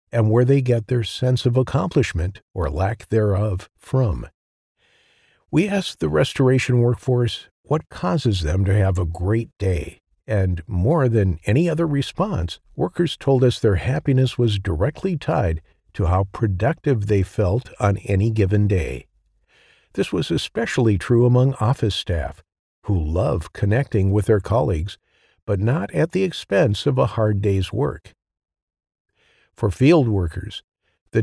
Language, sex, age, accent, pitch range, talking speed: English, male, 50-69, American, 95-125 Hz, 145 wpm